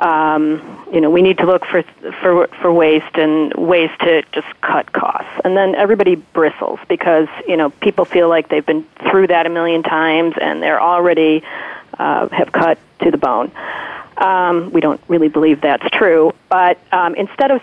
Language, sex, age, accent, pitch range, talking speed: English, female, 40-59, American, 160-190 Hz, 185 wpm